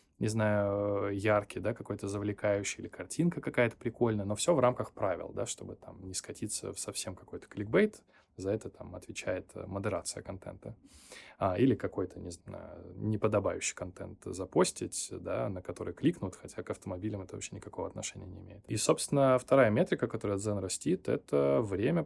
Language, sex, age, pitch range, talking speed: Russian, male, 20-39, 95-115 Hz, 160 wpm